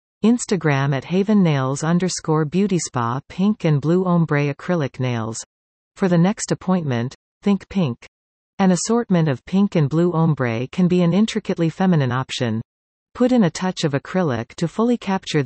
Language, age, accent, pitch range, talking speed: English, 40-59, American, 125-185 Hz, 160 wpm